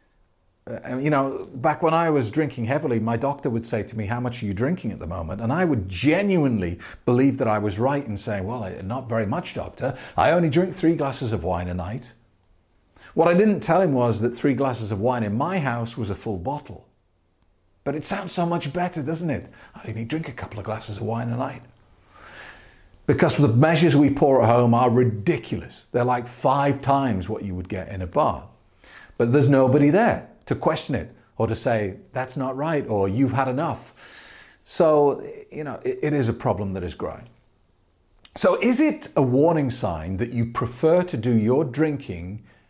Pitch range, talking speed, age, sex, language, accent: 100-145 Hz, 205 wpm, 40-59, male, English, British